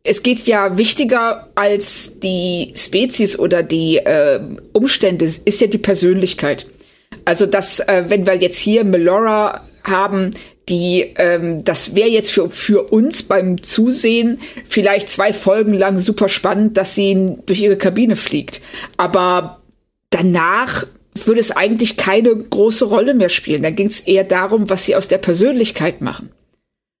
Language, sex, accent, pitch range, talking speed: German, female, German, 185-220 Hz, 150 wpm